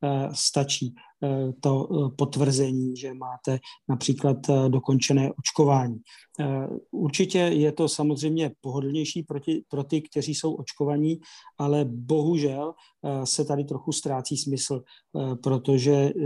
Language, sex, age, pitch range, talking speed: Czech, male, 40-59, 135-150 Hz, 100 wpm